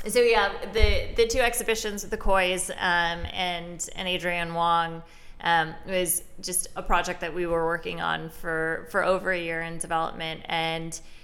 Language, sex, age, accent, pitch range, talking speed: English, female, 20-39, American, 170-190 Hz, 170 wpm